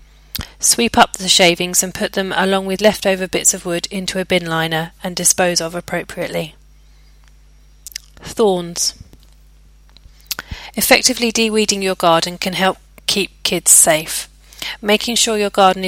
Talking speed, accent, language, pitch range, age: 130 wpm, British, English, 170-200 Hz, 30-49